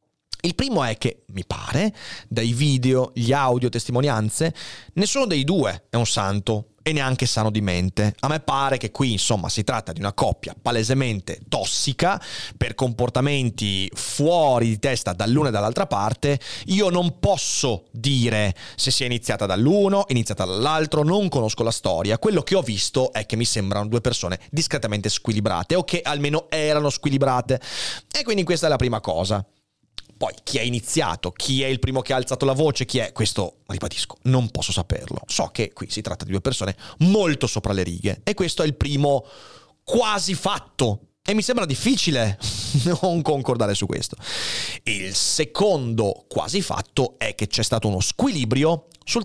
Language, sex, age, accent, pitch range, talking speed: Italian, male, 30-49, native, 110-145 Hz, 170 wpm